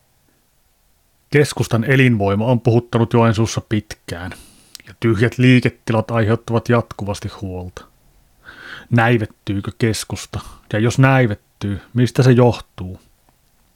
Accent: native